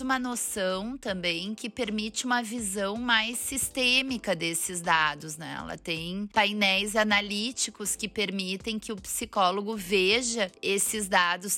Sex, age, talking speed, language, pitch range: female, 20-39, 125 wpm, Portuguese, 180-220 Hz